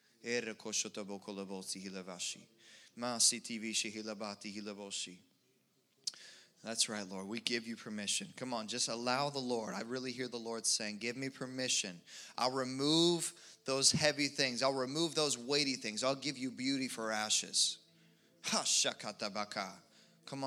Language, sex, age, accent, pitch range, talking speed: English, male, 20-39, American, 110-140 Hz, 115 wpm